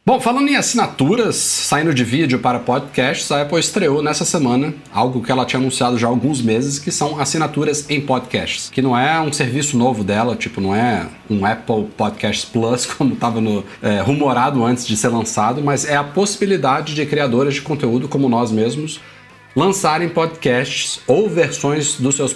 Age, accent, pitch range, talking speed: 40-59, Brazilian, 115-145 Hz, 175 wpm